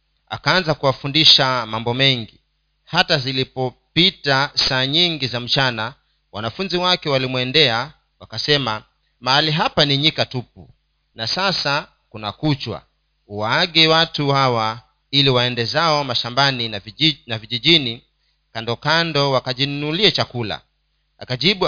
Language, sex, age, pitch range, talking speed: Swahili, male, 40-59, 115-150 Hz, 100 wpm